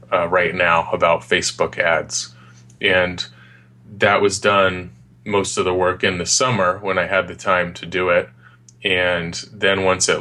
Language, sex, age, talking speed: English, male, 20-39, 170 wpm